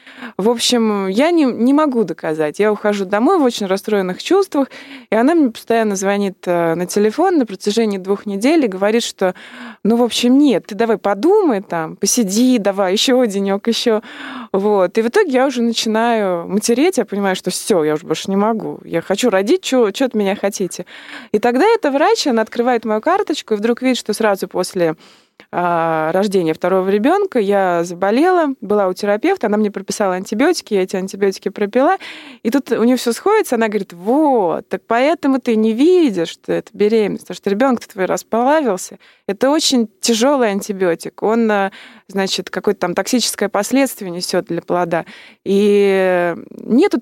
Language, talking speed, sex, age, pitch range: Russian, 170 wpm, female, 20-39, 195-250 Hz